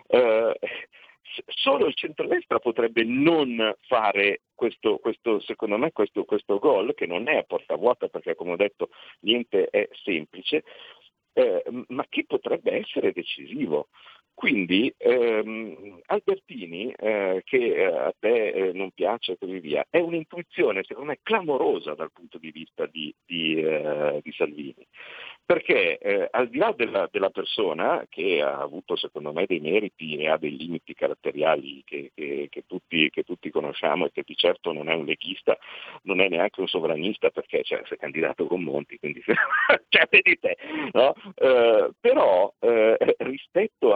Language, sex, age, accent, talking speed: Italian, male, 50-69, native, 160 wpm